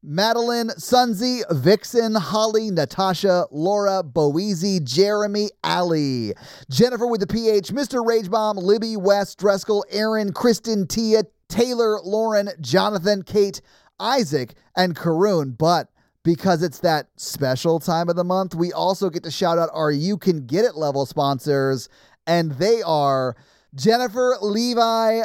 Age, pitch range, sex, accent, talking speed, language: 30-49, 170-215 Hz, male, American, 130 wpm, English